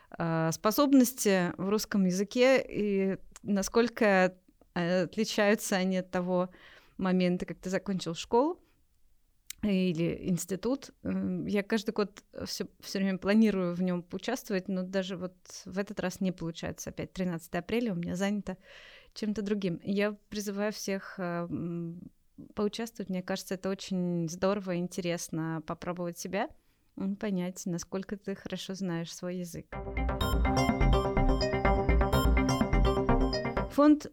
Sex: female